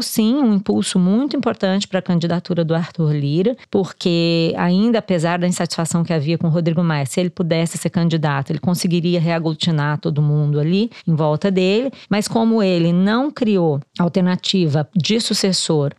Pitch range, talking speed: 170-230 Hz, 165 wpm